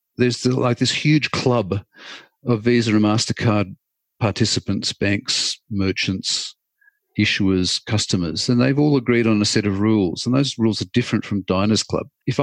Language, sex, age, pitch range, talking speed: English, male, 50-69, 105-135 Hz, 155 wpm